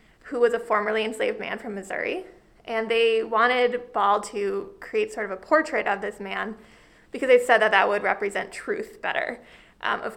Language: English